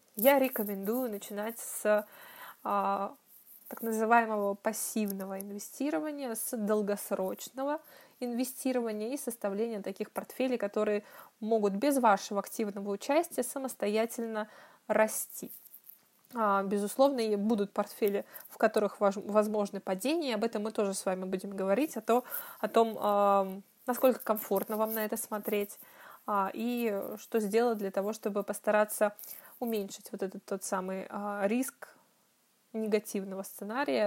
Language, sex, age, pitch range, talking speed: Russian, female, 20-39, 205-240 Hz, 110 wpm